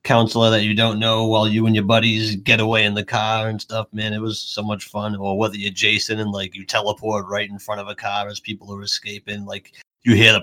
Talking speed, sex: 260 wpm, male